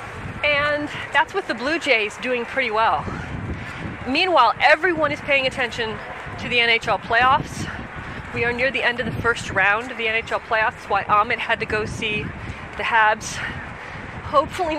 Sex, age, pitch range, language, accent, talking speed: female, 30-49, 235-295 Hz, English, American, 165 wpm